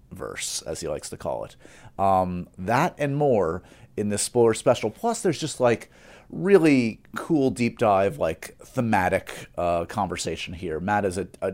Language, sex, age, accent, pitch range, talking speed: English, male, 30-49, American, 90-120 Hz, 165 wpm